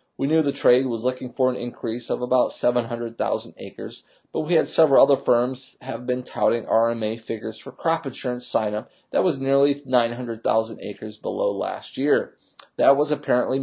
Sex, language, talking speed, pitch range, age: male, English, 170 wpm, 110-140 Hz, 30-49